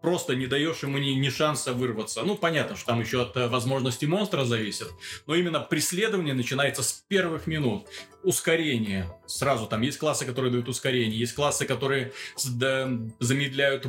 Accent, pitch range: native, 120-160 Hz